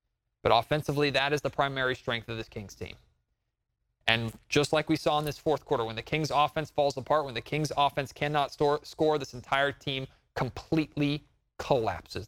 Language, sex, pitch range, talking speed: English, male, 135-185 Hz, 180 wpm